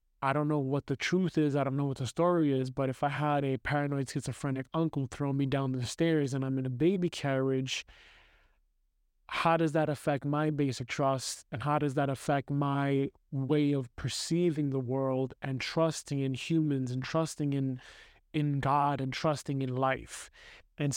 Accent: American